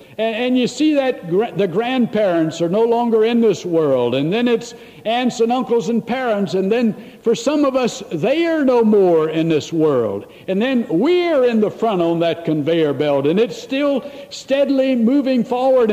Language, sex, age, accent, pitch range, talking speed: English, male, 60-79, American, 150-230 Hz, 185 wpm